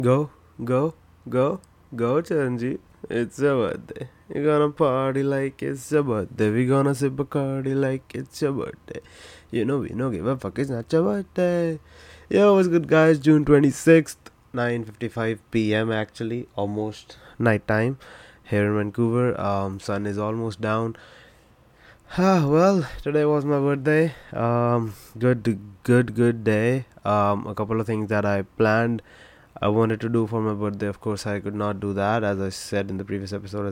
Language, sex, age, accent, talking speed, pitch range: English, male, 20-39, Indian, 175 wpm, 105-130 Hz